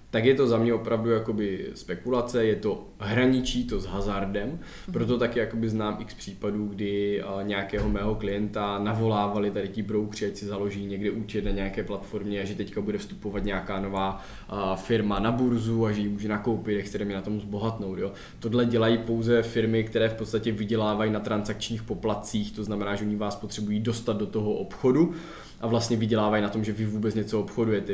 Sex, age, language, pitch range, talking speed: male, 20-39, Czech, 105-115 Hz, 185 wpm